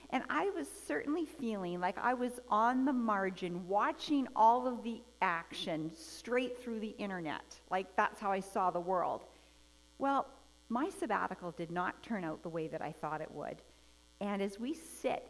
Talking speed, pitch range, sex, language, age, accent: 175 wpm, 170-230 Hz, female, English, 50-69, American